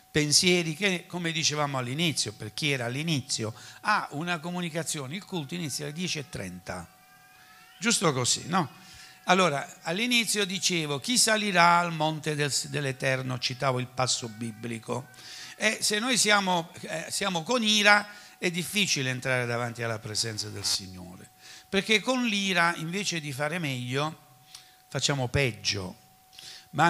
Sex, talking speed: male, 130 wpm